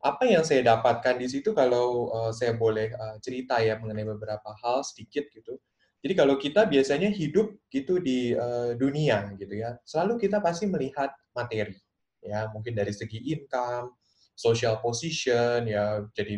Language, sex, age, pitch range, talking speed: Indonesian, male, 20-39, 110-135 Hz, 145 wpm